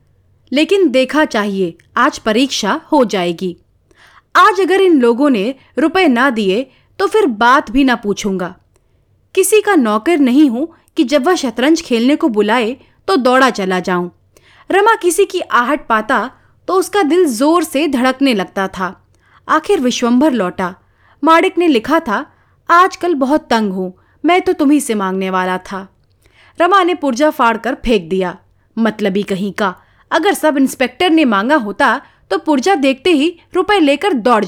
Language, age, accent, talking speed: Hindi, 30-49, native, 160 wpm